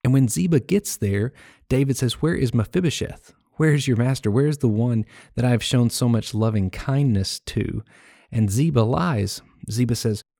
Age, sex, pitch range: 30-49, male, 105-130 Hz